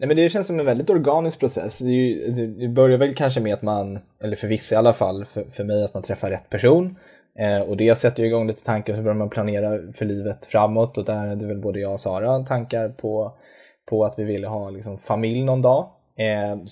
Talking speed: 250 wpm